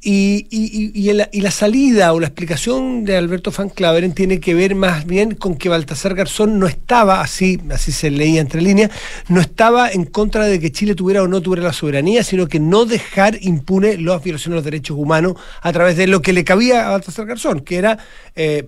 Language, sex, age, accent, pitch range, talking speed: Spanish, male, 40-59, Argentinian, 155-200 Hz, 220 wpm